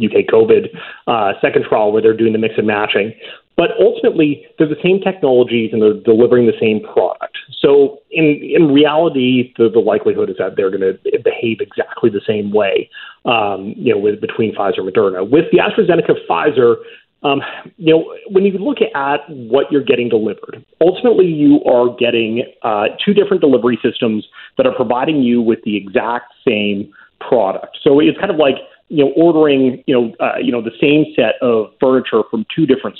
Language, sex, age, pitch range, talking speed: English, male, 30-49, 110-165 Hz, 185 wpm